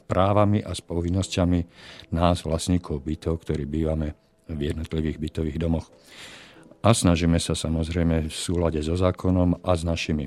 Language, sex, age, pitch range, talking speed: Slovak, male, 50-69, 80-95 Hz, 135 wpm